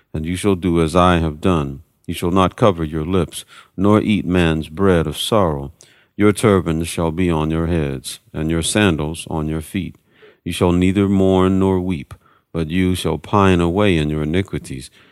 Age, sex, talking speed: 50-69, male, 185 wpm